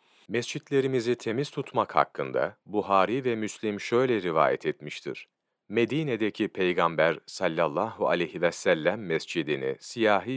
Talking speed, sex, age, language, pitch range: 105 wpm, male, 40-59, Turkish, 100-150 Hz